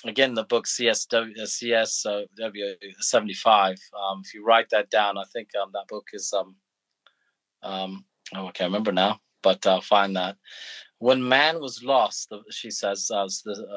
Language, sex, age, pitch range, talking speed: English, male, 30-49, 110-145 Hz, 165 wpm